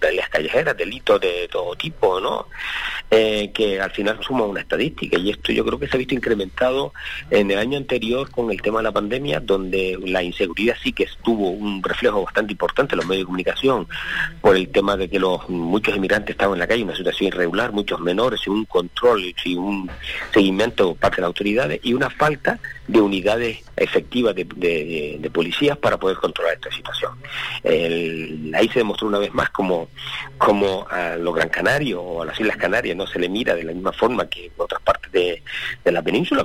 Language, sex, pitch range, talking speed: Spanish, male, 90-125 Hz, 205 wpm